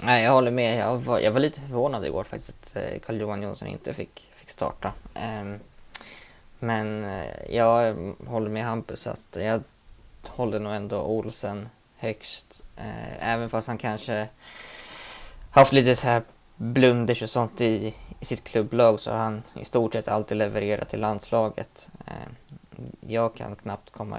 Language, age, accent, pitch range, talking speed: Swedish, 20-39, native, 105-115 Hz, 160 wpm